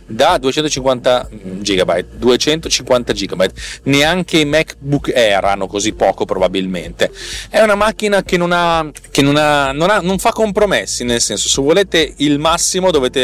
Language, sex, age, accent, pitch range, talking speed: Italian, male, 30-49, native, 110-160 Hz, 155 wpm